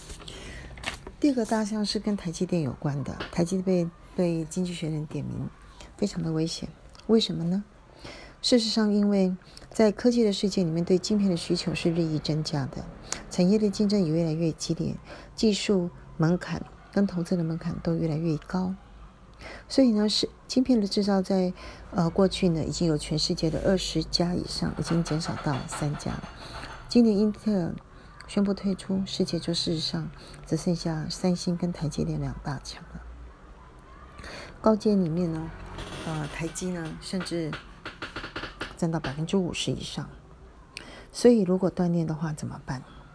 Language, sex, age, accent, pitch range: Chinese, female, 40-59, native, 160-190 Hz